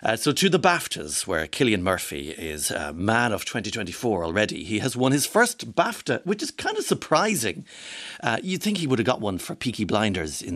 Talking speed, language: 210 wpm, English